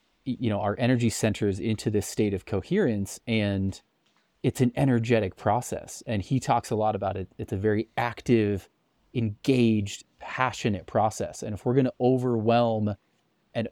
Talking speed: 155 wpm